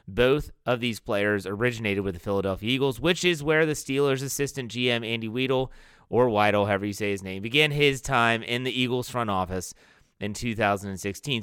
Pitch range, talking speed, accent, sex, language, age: 105-135 Hz, 185 wpm, American, male, English, 30-49